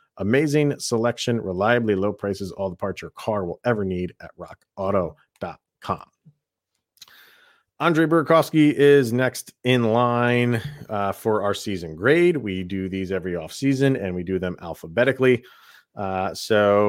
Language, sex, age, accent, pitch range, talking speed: English, male, 30-49, American, 100-140 Hz, 140 wpm